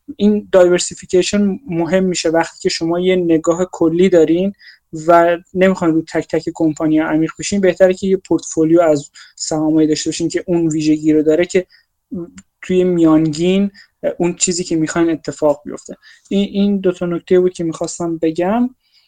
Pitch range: 165-195 Hz